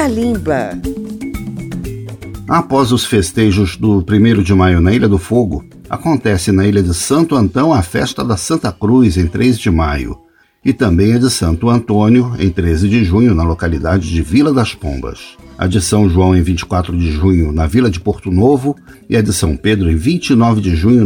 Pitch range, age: 95-120 Hz, 60-79